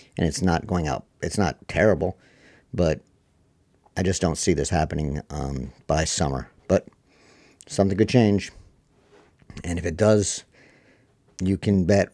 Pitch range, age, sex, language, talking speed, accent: 80-95 Hz, 50-69, male, English, 145 wpm, American